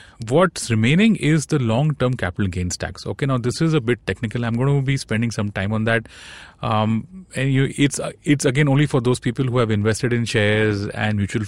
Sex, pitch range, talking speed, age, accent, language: male, 105-140 Hz, 215 wpm, 30-49, Indian, English